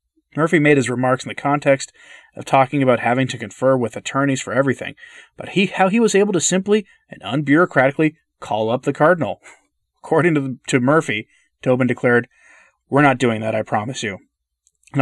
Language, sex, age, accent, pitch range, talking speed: English, male, 30-49, American, 120-150 Hz, 180 wpm